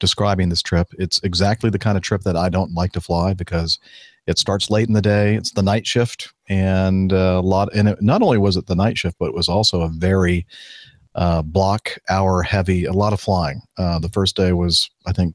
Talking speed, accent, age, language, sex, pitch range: 225 wpm, American, 40-59, English, male, 90-100 Hz